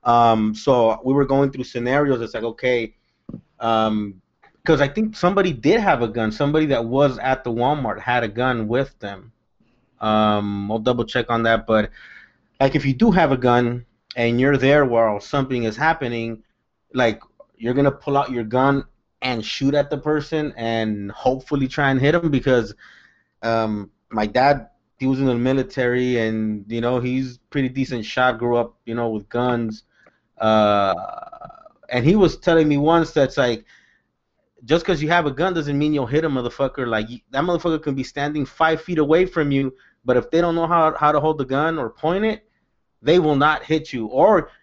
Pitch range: 120-155 Hz